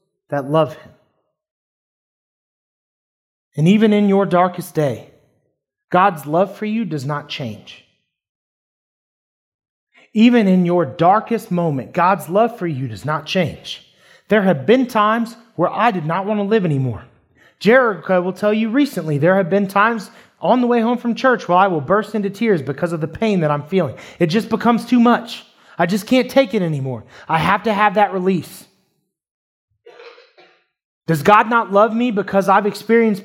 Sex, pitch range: male, 175-230 Hz